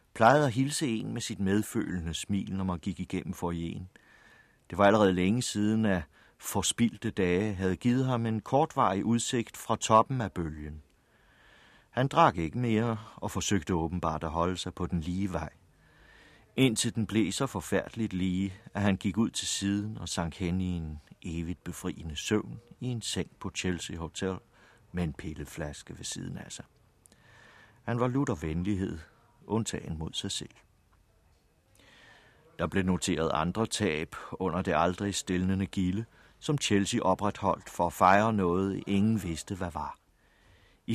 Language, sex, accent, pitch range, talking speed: Danish, male, native, 90-115 Hz, 165 wpm